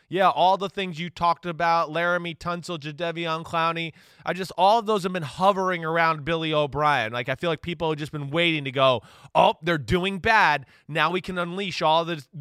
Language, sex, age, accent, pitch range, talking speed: English, male, 20-39, American, 145-185 Hz, 210 wpm